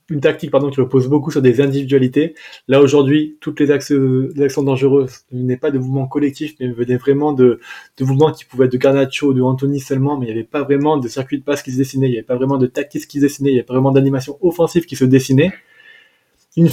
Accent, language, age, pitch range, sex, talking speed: French, French, 20-39, 130-155 Hz, male, 250 wpm